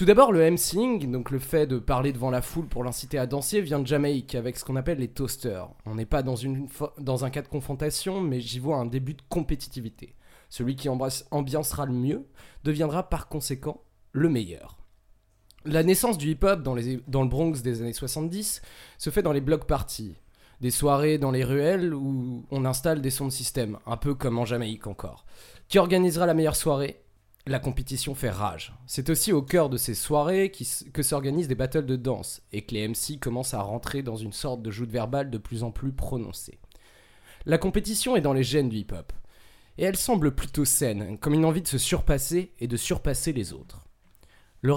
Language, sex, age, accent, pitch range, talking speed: French, male, 20-39, French, 120-150 Hz, 210 wpm